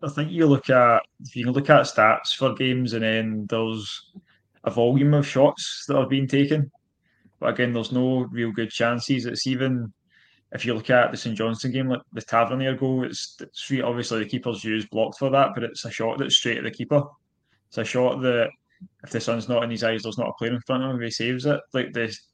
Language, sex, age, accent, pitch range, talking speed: English, male, 20-39, British, 115-130 Hz, 230 wpm